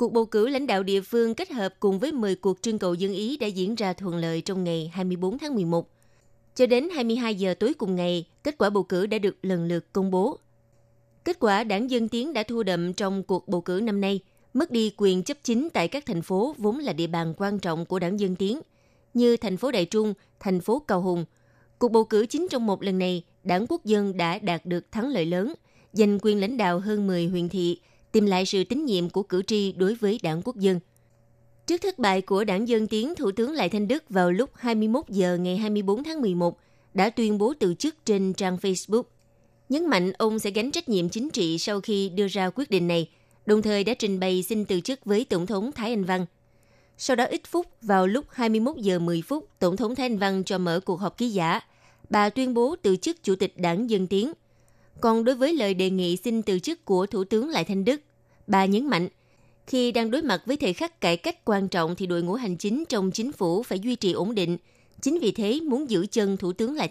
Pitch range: 180-230 Hz